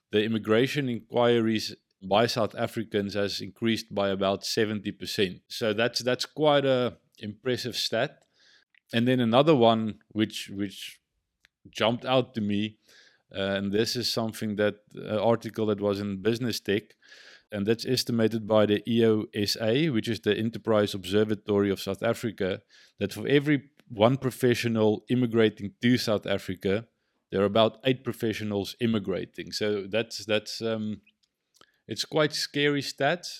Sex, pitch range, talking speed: male, 105-125 Hz, 140 wpm